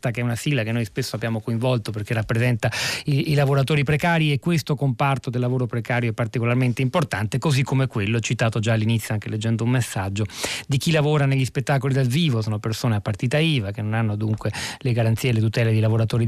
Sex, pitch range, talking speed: male, 115-150 Hz, 210 wpm